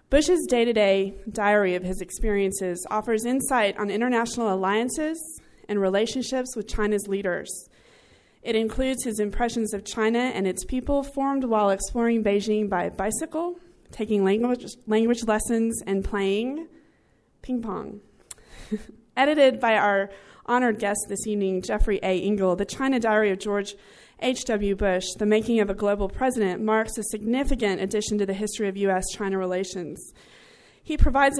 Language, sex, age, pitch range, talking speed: English, female, 20-39, 195-240 Hz, 140 wpm